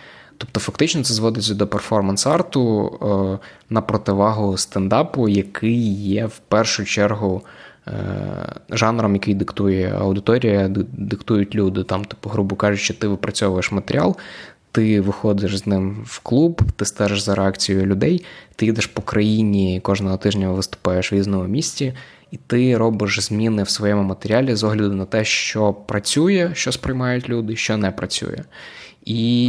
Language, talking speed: Ukrainian, 140 wpm